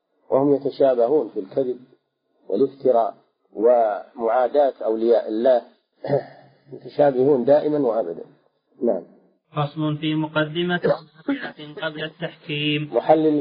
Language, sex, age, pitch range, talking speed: Arabic, male, 50-69, 115-150 Hz, 75 wpm